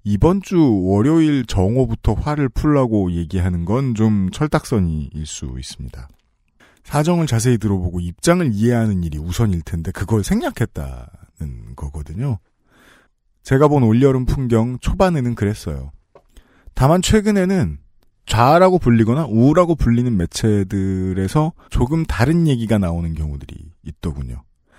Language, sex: Korean, male